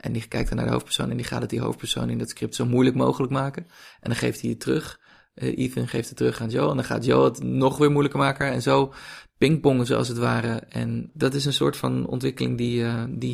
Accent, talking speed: Dutch, 260 wpm